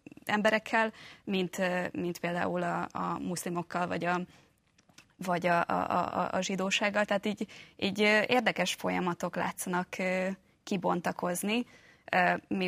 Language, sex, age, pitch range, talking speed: Hungarian, female, 20-39, 170-190 Hz, 105 wpm